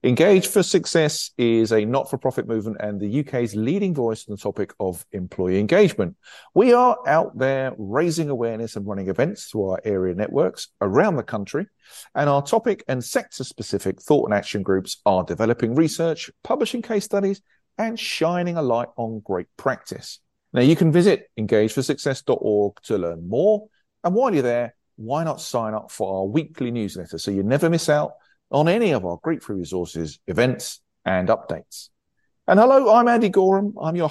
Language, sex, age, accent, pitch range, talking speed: English, male, 50-69, British, 105-165 Hz, 170 wpm